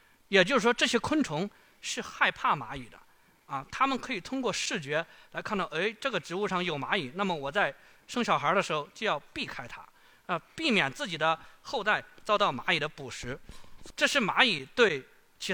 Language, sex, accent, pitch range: Chinese, male, native, 180-265 Hz